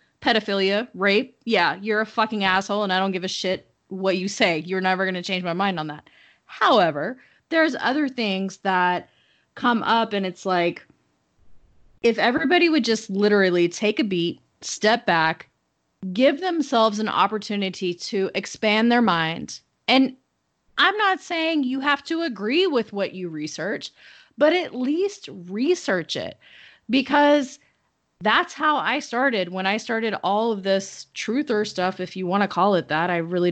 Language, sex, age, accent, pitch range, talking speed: English, female, 30-49, American, 185-250 Hz, 165 wpm